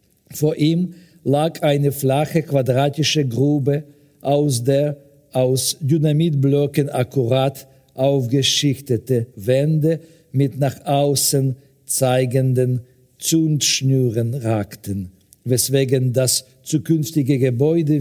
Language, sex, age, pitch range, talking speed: German, male, 50-69, 130-150 Hz, 80 wpm